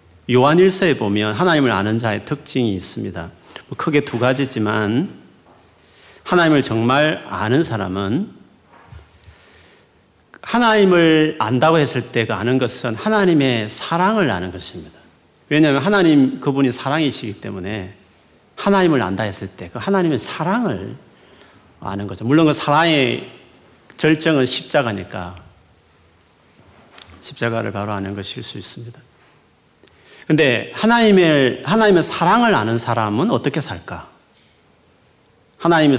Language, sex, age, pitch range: Korean, male, 40-59, 100-155 Hz